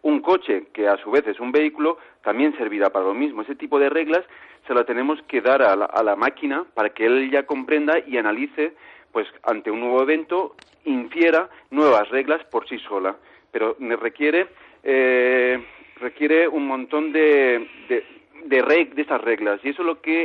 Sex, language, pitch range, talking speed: male, Spanish, 125-160 Hz, 195 wpm